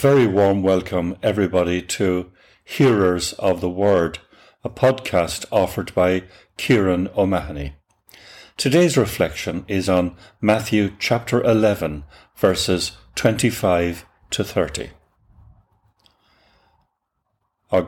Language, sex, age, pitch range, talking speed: English, male, 60-79, 90-110 Hz, 90 wpm